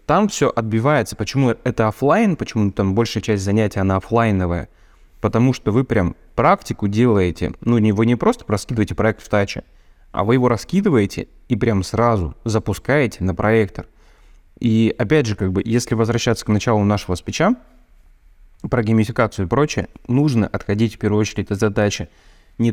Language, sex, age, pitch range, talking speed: Russian, male, 20-39, 95-115 Hz, 160 wpm